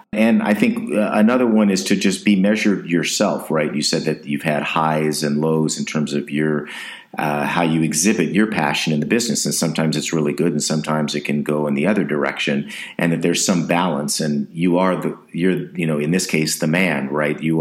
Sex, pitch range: male, 75-80 Hz